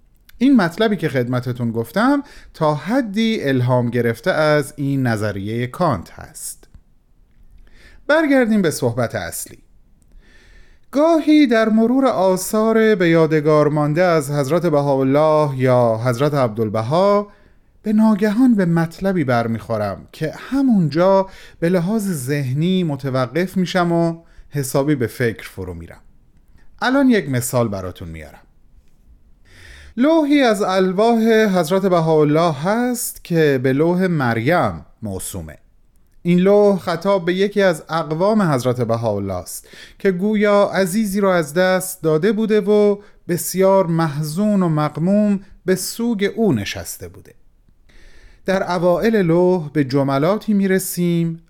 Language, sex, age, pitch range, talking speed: Persian, male, 30-49, 125-195 Hz, 115 wpm